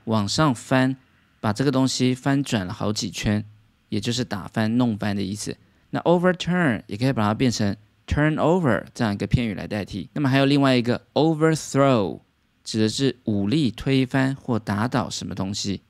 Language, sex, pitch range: Chinese, male, 110-140 Hz